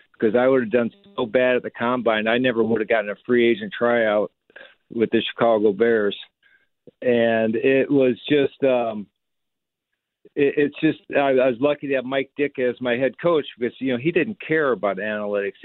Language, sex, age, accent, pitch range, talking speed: English, male, 50-69, American, 115-140 Hz, 200 wpm